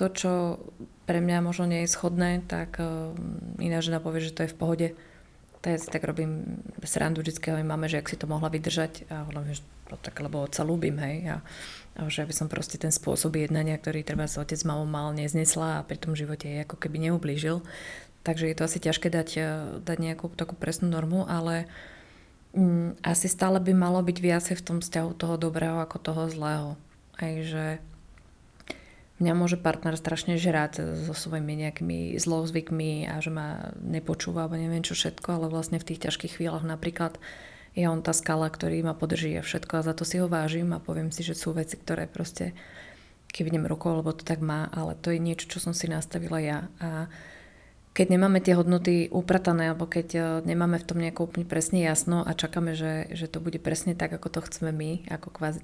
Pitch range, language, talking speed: 160-170 Hz, Slovak, 200 wpm